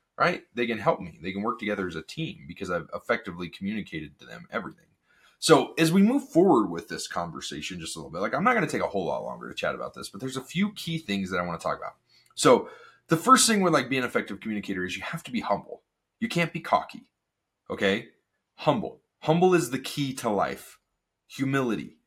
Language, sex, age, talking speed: English, male, 30-49, 235 wpm